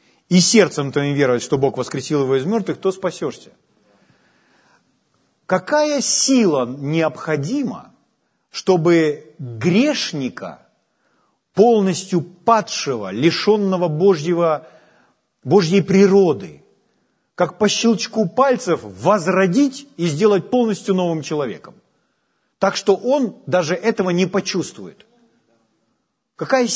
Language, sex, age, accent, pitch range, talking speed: Ukrainian, male, 40-59, native, 150-200 Hz, 90 wpm